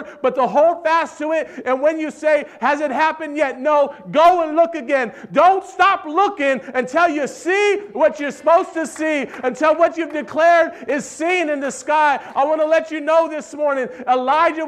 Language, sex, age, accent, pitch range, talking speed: English, male, 40-59, American, 225-295 Hz, 195 wpm